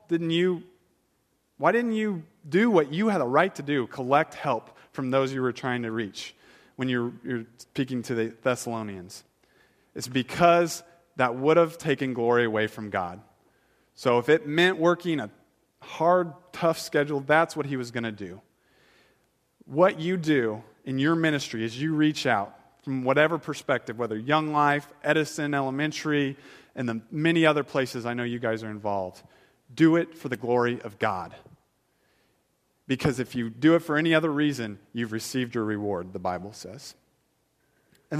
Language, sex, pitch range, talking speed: English, male, 115-155 Hz, 170 wpm